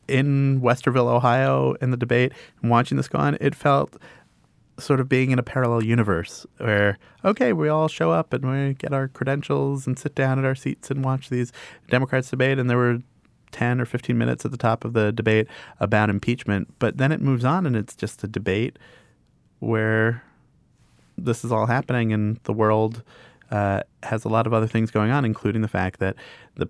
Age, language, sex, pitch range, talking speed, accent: 30-49, English, male, 95-125 Hz, 200 wpm, American